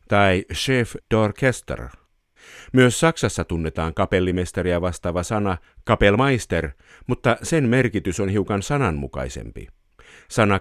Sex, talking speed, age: male, 95 wpm, 50-69